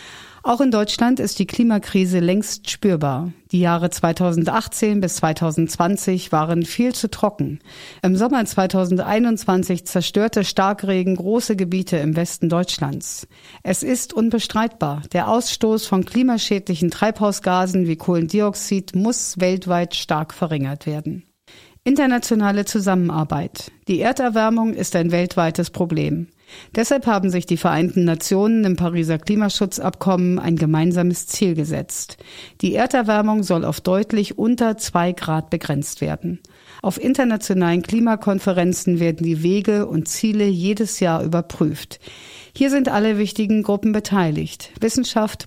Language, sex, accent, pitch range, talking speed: German, female, German, 170-215 Hz, 120 wpm